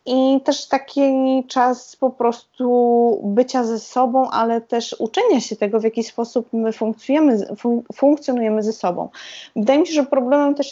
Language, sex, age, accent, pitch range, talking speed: Polish, female, 20-39, native, 225-275 Hz, 150 wpm